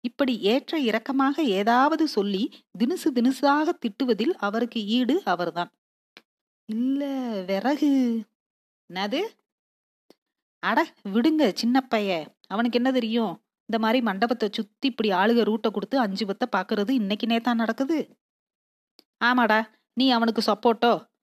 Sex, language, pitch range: female, Tamil, 215-275 Hz